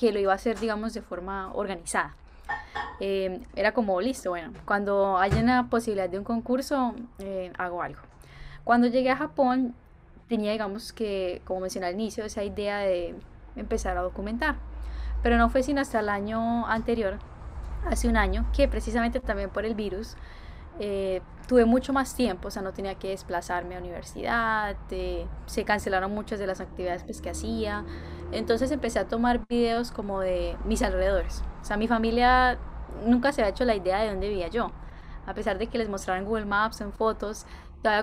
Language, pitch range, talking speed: Spanish, 190-235 Hz, 180 wpm